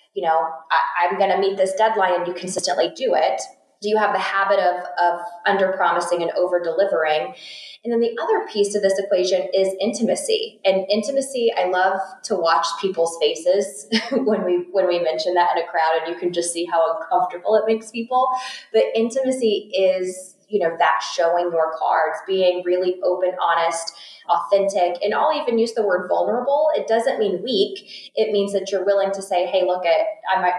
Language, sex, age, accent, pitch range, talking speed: English, female, 20-39, American, 175-215 Hz, 190 wpm